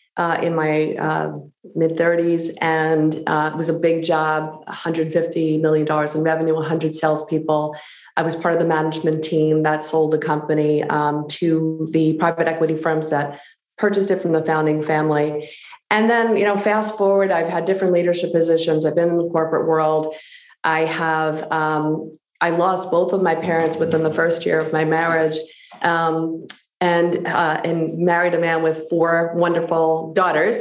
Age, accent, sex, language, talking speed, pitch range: 30-49, American, female, English, 175 wpm, 155-165 Hz